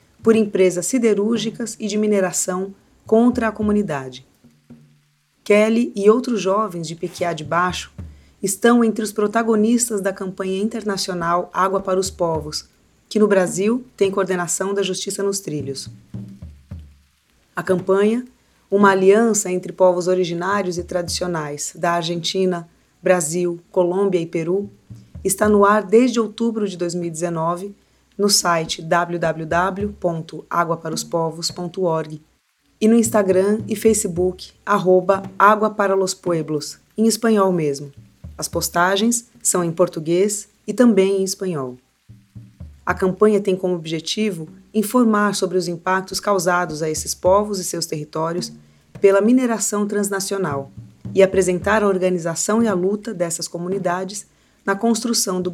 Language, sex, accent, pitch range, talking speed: Portuguese, female, Brazilian, 170-205 Hz, 125 wpm